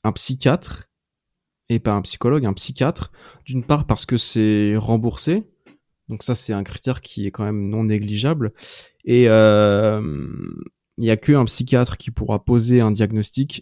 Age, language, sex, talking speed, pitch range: 20-39, French, male, 165 wpm, 110-130 Hz